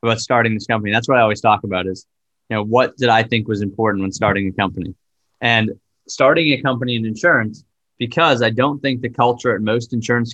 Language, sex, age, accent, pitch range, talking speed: English, male, 20-39, American, 100-115 Hz, 220 wpm